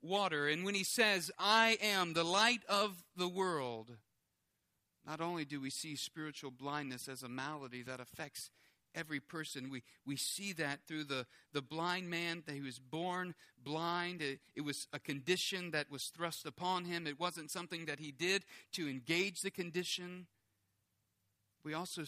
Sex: male